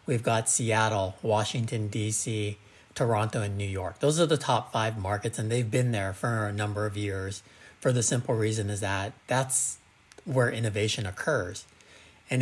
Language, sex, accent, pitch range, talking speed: English, male, American, 105-130 Hz, 170 wpm